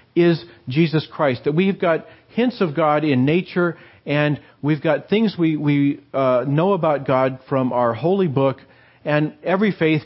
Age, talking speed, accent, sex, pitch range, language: 40-59, 165 wpm, American, male, 130-165 Hz, English